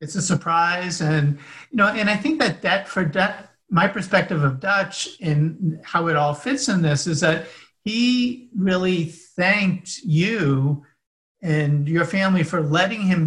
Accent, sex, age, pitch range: American, male, 50-69, 155-185 Hz